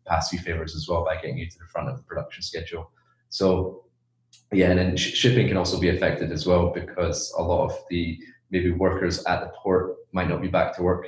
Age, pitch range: 20-39, 85-95 Hz